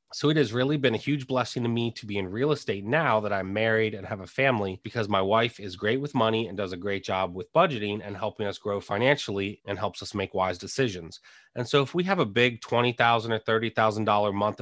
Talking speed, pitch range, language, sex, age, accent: 240 wpm, 105-125 Hz, English, male, 30-49, American